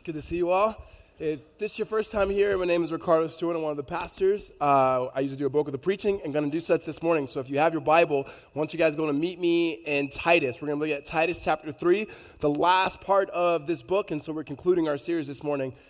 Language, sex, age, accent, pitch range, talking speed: English, male, 20-39, American, 140-175 Hz, 285 wpm